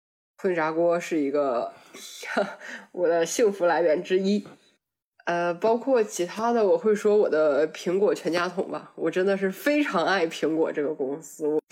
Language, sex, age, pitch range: Chinese, female, 20-39, 160-205 Hz